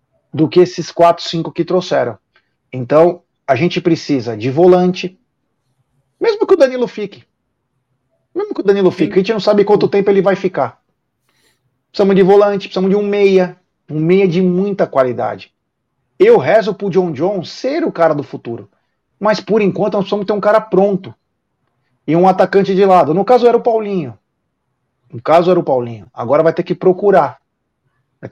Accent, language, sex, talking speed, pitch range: Brazilian, Portuguese, male, 180 wpm, 140-195 Hz